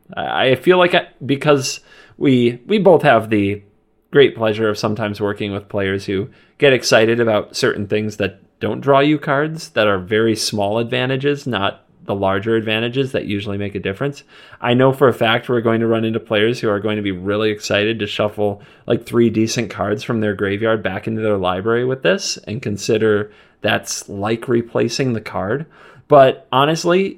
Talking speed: 185 wpm